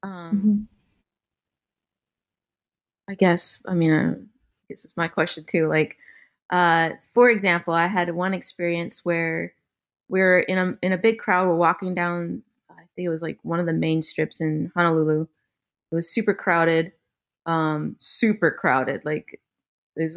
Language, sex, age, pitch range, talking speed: English, female, 20-39, 165-220 Hz, 155 wpm